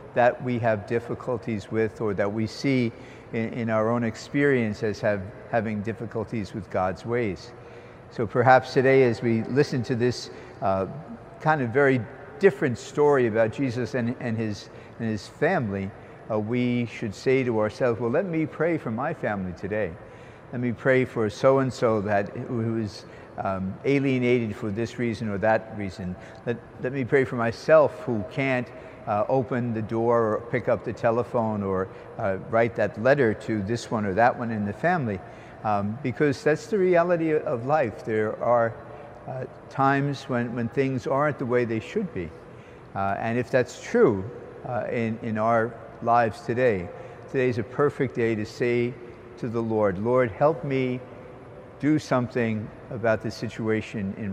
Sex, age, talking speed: male, 60-79, 170 wpm